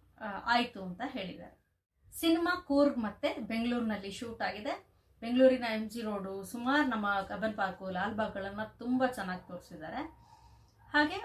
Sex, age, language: female, 30-49, Kannada